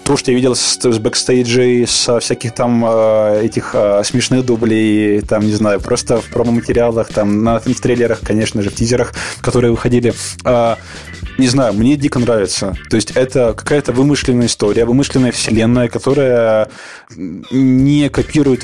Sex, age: male, 20-39